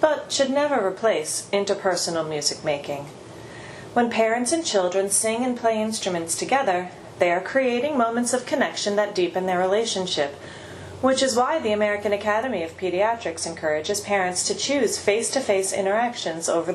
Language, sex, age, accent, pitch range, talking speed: English, female, 30-49, American, 180-230 Hz, 145 wpm